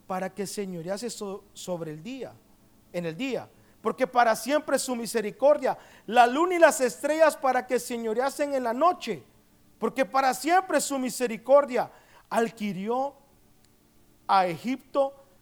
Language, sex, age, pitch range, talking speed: Spanish, male, 40-59, 195-265 Hz, 130 wpm